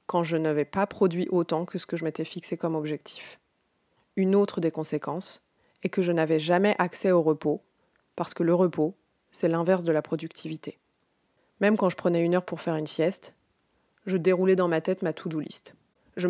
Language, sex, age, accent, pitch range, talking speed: French, female, 20-39, French, 165-195 Hz, 200 wpm